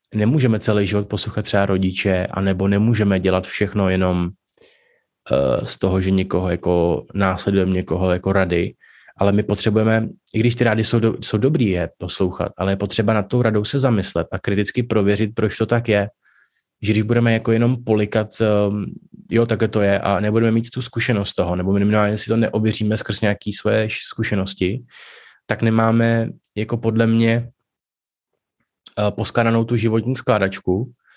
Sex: male